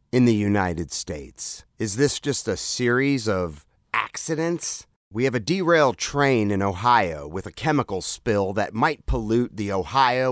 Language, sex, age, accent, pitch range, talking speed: English, male, 30-49, American, 110-150 Hz, 155 wpm